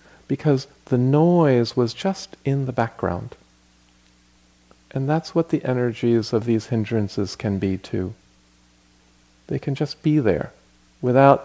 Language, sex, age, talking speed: English, male, 40-59, 130 wpm